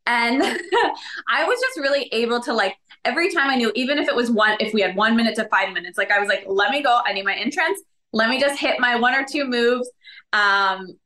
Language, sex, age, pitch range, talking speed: English, female, 20-39, 210-260 Hz, 250 wpm